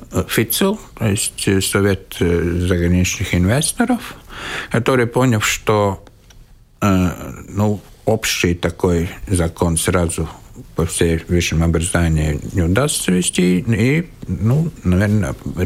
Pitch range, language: 90-125 Hz, Russian